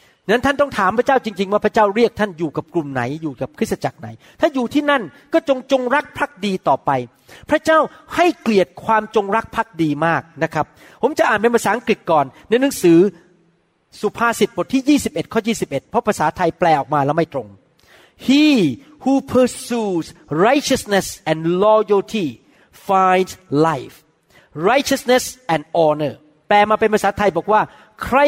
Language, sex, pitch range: Thai, male, 190-270 Hz